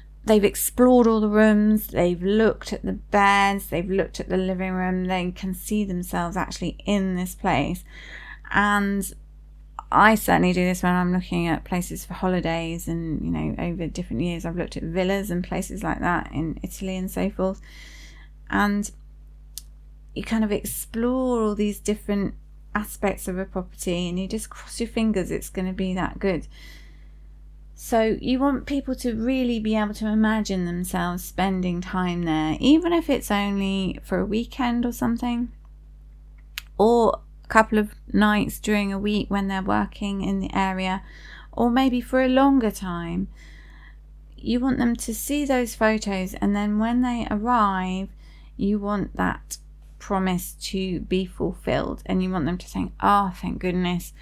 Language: English